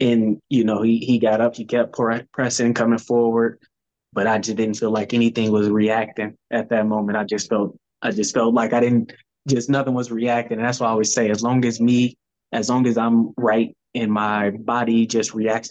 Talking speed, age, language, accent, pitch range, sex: 220 wpm, 20-39, English, American, 110-125 Hz, male